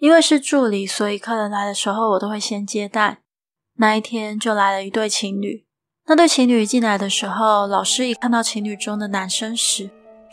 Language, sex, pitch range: Chinese, female, 210-250 Hz